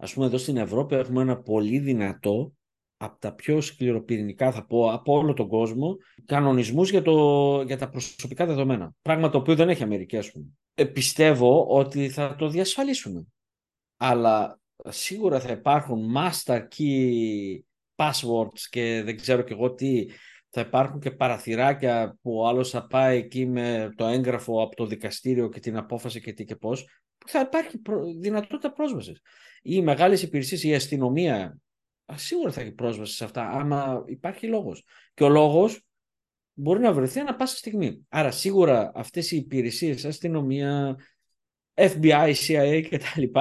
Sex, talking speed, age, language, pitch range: male, 155 wpm, 50-69, Greek, 120-155 Hz